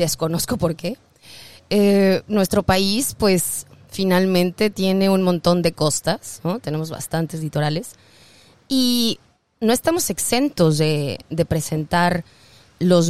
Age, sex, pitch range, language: 20-39, female, 160-200 Hz, Spanish